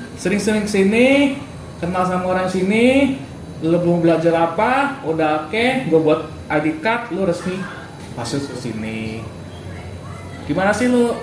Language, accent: Indonesian, native